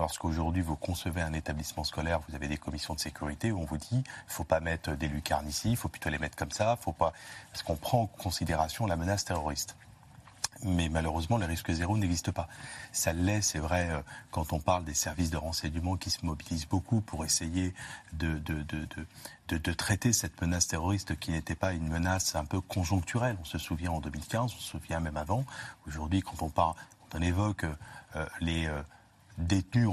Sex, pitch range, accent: male, 80-100 Hz, French